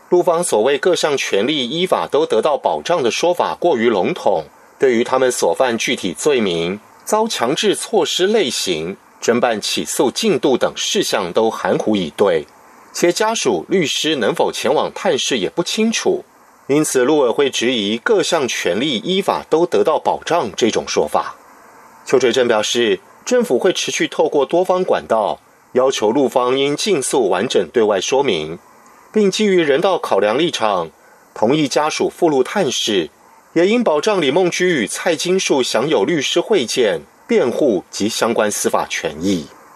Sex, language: male, German